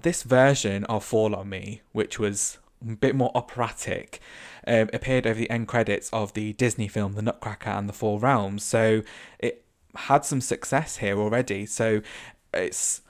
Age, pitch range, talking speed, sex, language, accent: 20-39, 105-115 Hz, 170 wpm, male, English, British